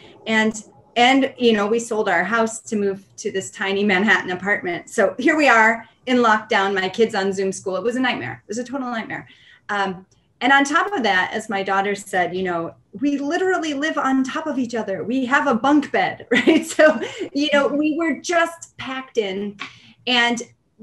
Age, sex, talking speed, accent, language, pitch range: 30-49, female, 200 wpm, American, English, 195-250 Hz